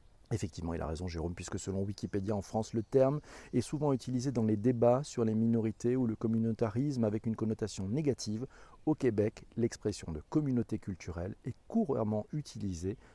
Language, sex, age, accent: French, male, 40-59, French